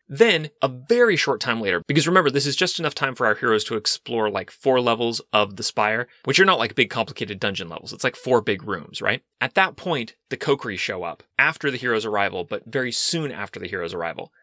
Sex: male